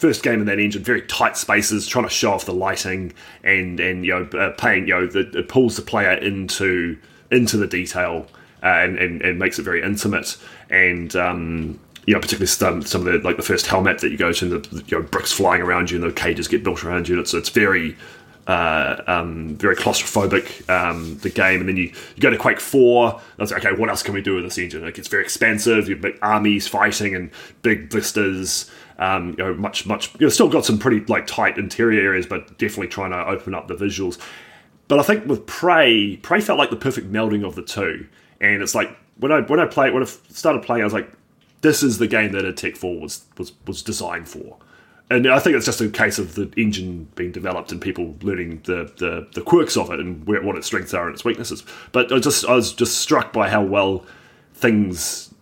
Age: 20-39